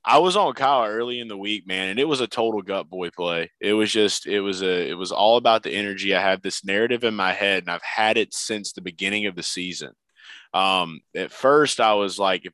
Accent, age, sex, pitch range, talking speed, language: American, 20-39, male, 90-110 Hz, 255 wpm, English